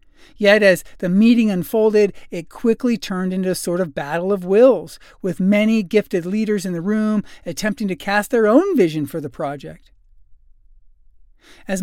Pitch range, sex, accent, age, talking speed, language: 160-215 Hz, male, American, 40-59, 160 wpm, English